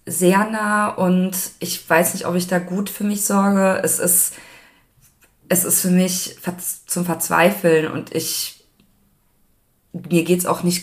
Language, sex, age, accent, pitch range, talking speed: German, female, 20-39, German, 165-190 Hz, 155 wpm